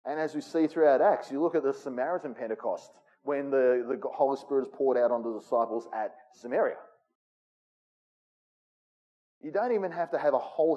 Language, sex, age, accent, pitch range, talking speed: English, male, 30-49, Australian, 135-220 Hz, 185 wpm